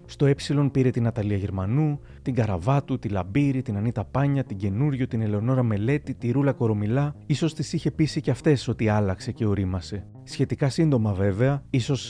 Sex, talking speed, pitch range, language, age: male, 175 wpm, 110-135 Hz, Greek, 30-49